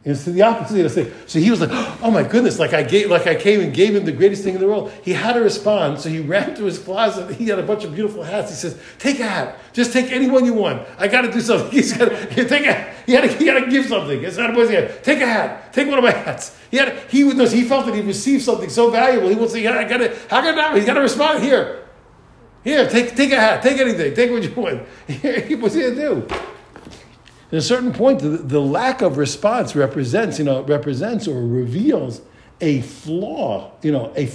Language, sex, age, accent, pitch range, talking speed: English, male, 60-79, American, 145-235 Hz, 250 wpm